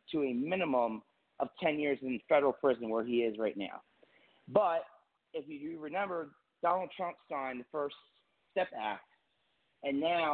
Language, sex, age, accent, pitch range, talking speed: English, male, 30-49, American, 125-170 Hz, 155 wpm